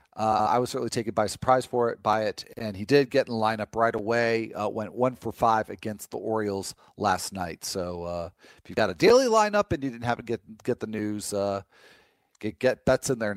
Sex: male